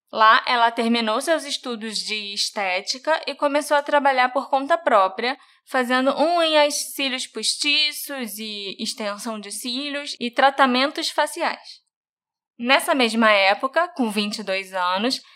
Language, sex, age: Portuguese, female, 20-39